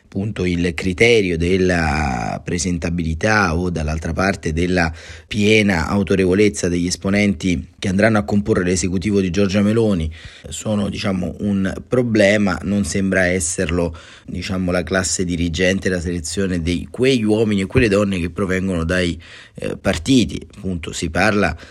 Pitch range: 90-105 Hz